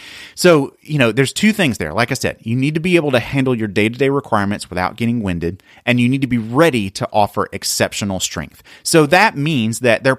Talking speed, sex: 235 wpm, male